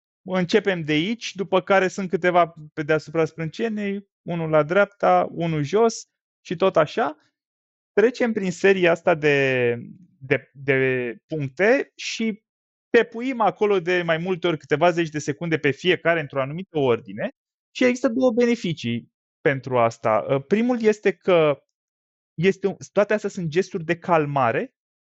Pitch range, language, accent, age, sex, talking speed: 155-220 Hz, Romanian, native, 20-39, male, 140 wpm